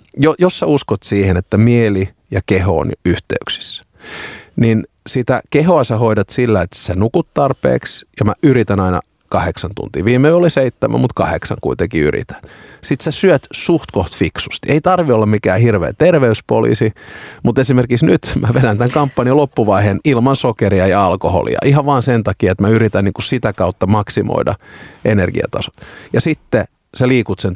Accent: native